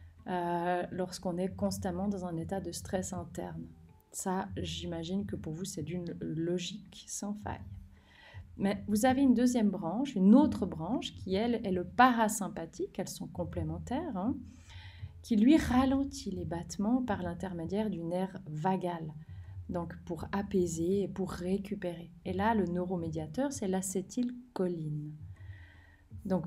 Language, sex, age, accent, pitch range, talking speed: French, female, 30-49, French, 160-215 Hz, 135 wpm